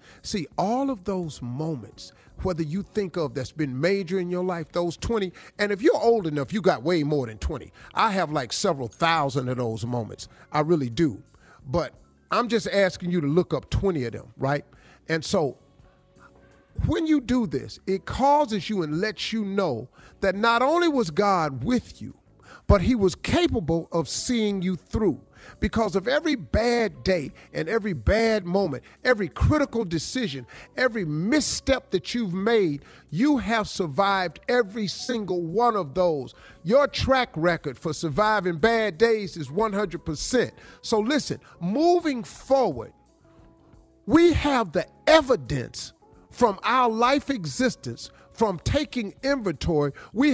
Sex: male